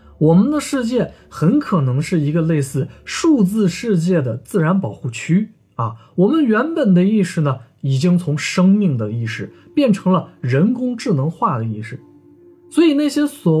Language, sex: Chinese, male